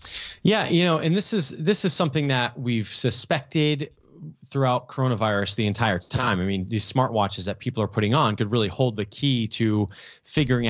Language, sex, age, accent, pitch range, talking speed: English, male, 30-49, American, 110-145 Hz, 185 wpm